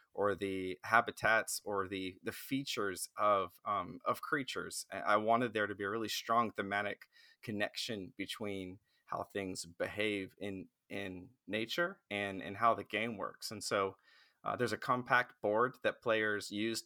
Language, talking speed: English, 155 wpm